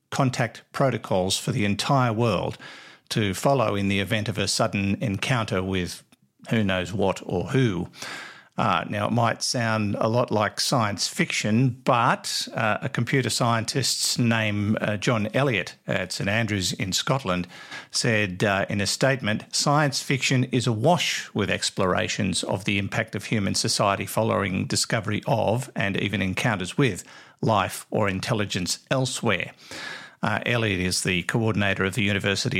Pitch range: 100-130 Hz